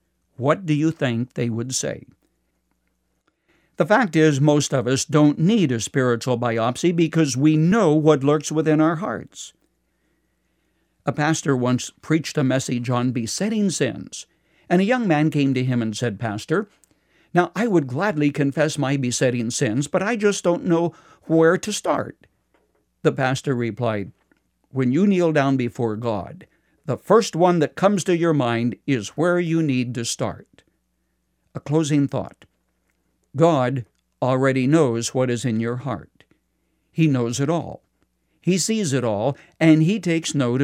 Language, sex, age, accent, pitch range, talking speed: English, male, 60-79, American, 125-160 Hz, 160 wpm